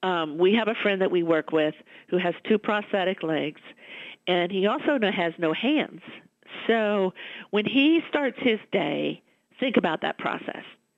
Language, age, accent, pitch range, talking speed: English, 50-69, American, 170-220 Hz, 165 wpm